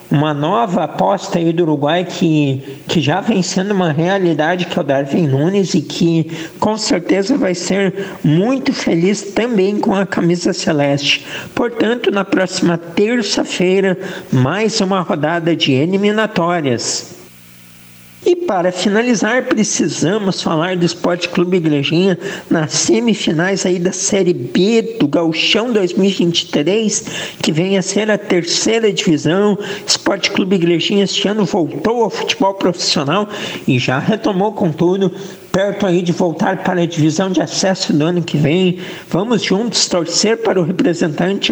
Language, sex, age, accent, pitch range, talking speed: Portuguese, male, 50-69, Brazilian, 170-210 Hz, 140 wpm